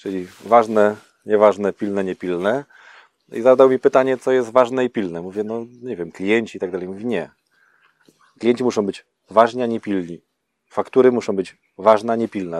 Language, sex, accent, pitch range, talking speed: Polish, male, native, 100-130 Hz, 165 wpm